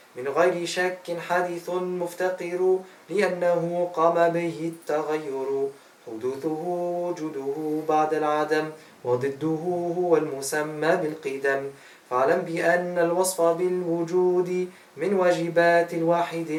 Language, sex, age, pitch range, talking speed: German, male, 20-39, 150-175 Hz, 85 wpm